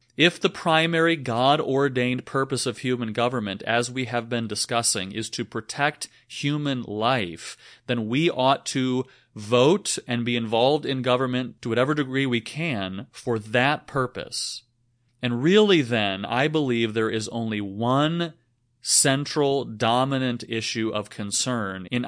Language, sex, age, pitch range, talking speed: English, male, 30-49, 110-130 Hz, 140 wpm